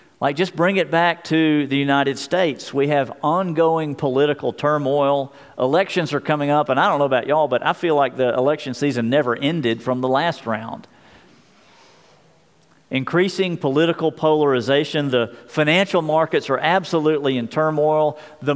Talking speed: 155 wpm